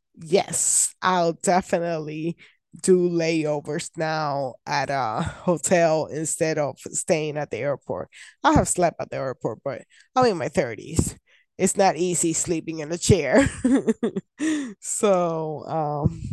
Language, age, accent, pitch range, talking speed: English, 20-39, American, 160-200 Hz, 130 wpm